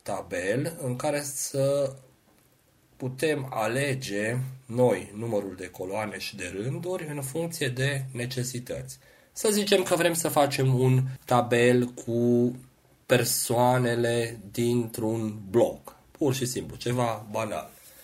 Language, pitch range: Romanian, 110-140 Hz